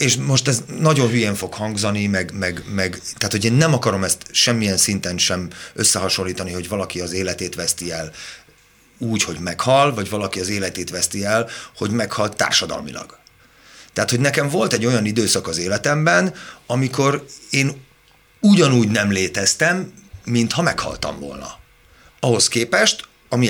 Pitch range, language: 95-140 Hz, Hungarian